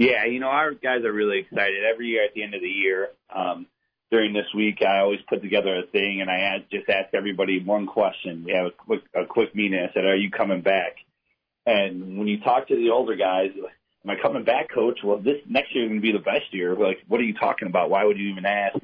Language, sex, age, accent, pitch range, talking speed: English, male, 40-59, American, 95-120 Hz, 255 wpm